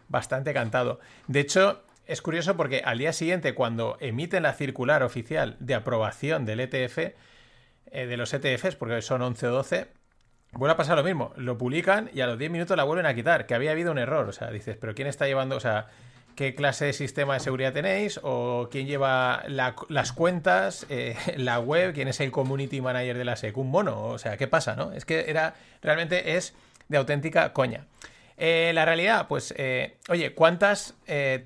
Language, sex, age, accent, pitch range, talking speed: Spanish, male, 30-49, Spanish, 125-165 Hz, 200 wpm